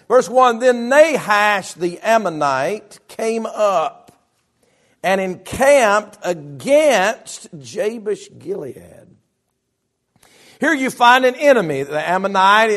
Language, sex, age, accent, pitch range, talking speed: English, male, 50-69, American, 165-245 Hz, 95 wpm